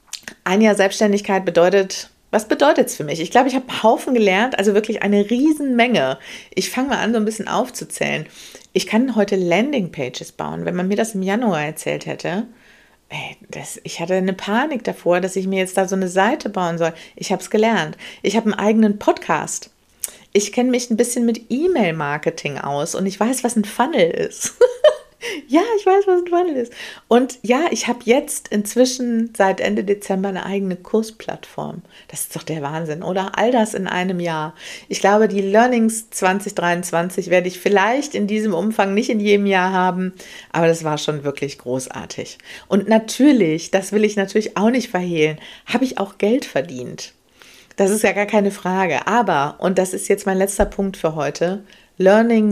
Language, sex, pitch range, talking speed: German, female, 185-235 Hz, 190 wpm